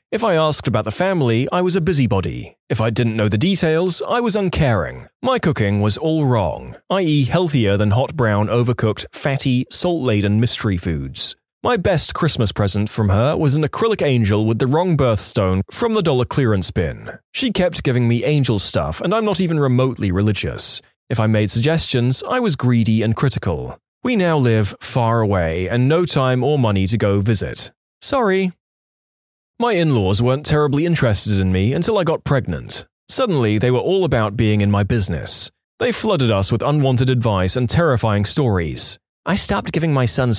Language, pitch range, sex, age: English, 105-155 Hz, male, 20-39